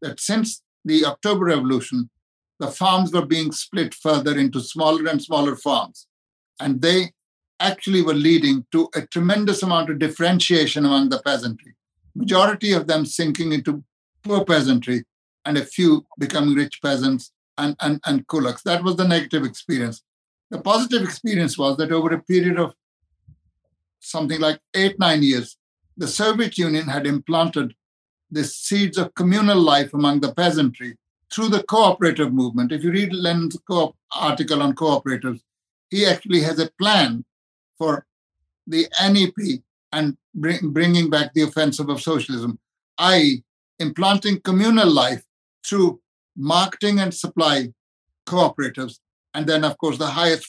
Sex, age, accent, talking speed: male, 60-79, Indian, 145 wpm